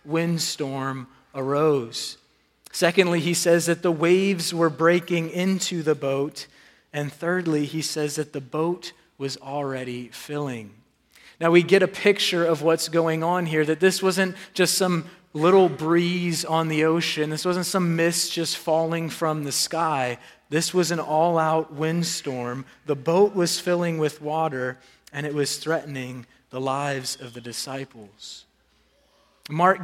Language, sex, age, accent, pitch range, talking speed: English, male, 30-49, American, 140-170 Hz, 145 wpm